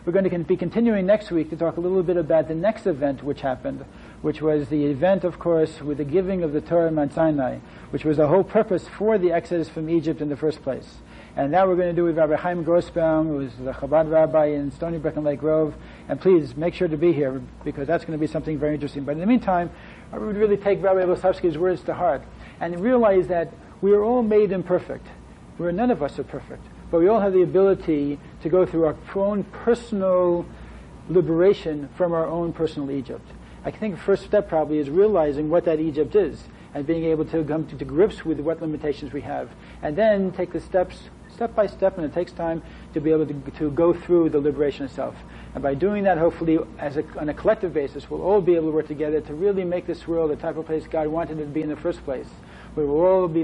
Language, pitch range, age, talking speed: English, 150-185 Hz, 60-79, 240 wpm